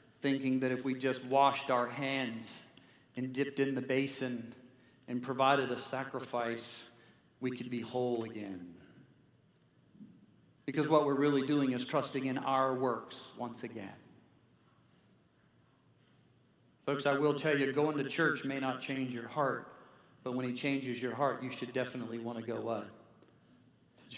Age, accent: 40-59, American